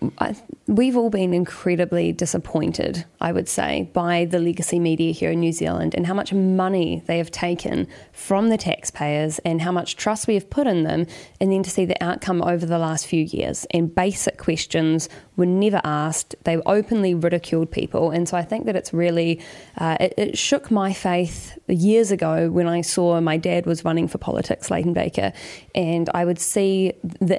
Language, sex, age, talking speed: English, female, 20-39, 190 wpm